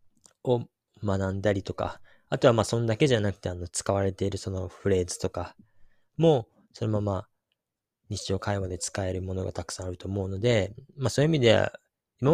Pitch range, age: 95-115 Hz, 20-39